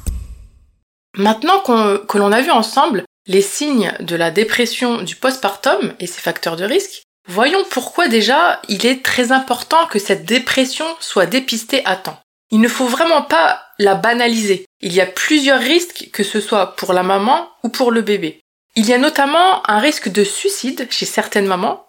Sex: female